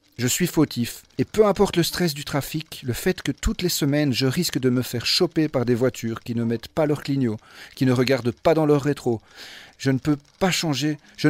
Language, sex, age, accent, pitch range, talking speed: French, male, 40-59, French, 125-155 Hz, 235 wpm